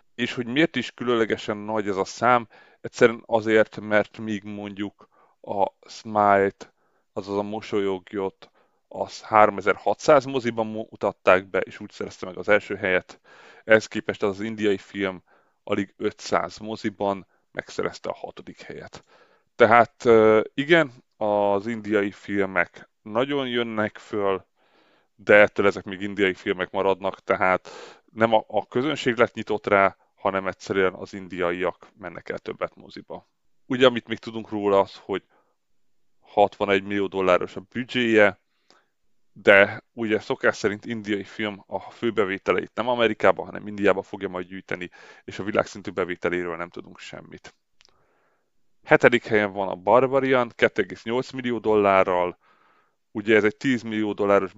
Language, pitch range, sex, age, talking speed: Hungarian, 95-115 Hz, male, 30-49, 135 wpm